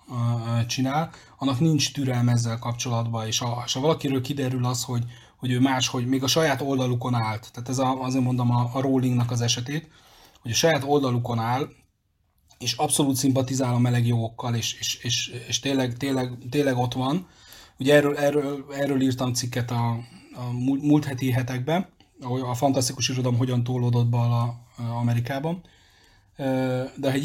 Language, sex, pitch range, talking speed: Hungarian, male, 120-140 Hz, 155 wpm